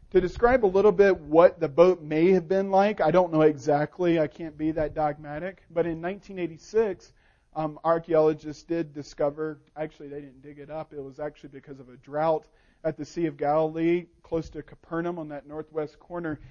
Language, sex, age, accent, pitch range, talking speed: English, male, 40-59, American, 150-175 Hz, 195 wpm